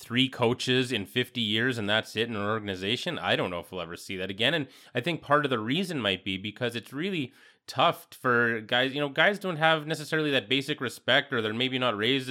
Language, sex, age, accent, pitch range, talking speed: English, male, 20-39, American, 110-135 Hz, 240 wpm